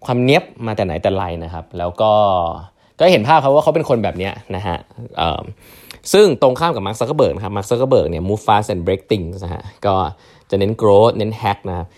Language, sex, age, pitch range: Thai, male, 20-39, 95-120 Hz